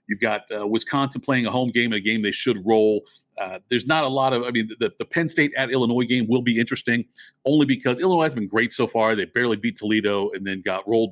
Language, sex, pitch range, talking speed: English, male, 110-130 Hz, 255 wpm